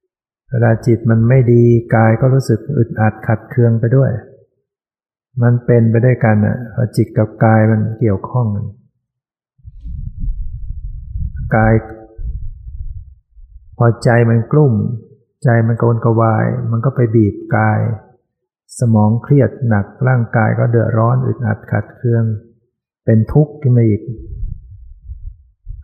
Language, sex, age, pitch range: Thai, male, 60-79, 110-125 Hz